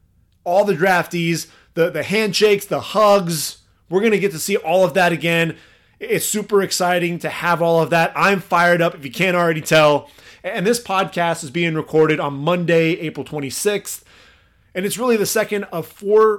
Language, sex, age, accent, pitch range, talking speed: English, male, 30-49, American, 155-195 Hz, 185 wpm